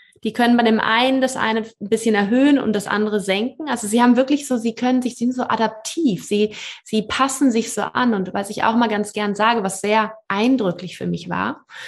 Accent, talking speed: German, 225 wpm